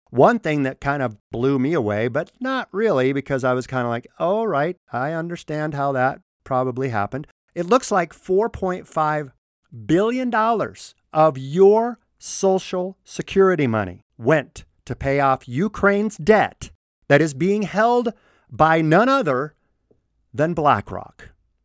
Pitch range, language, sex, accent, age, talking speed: 130-185 Hz, English, male, American, 50-69, 140 wpm